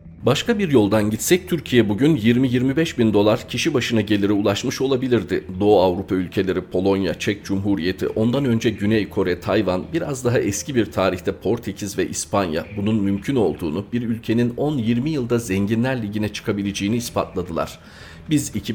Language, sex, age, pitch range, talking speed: Turkish, male, 40-59, 95-115 Hz, 145 wpm